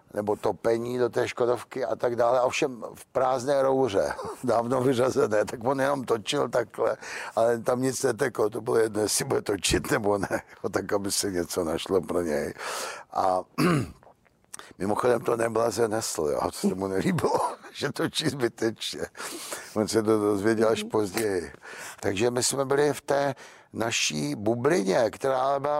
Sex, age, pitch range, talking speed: male, 60-79, 115-140 Hz, 155 wpm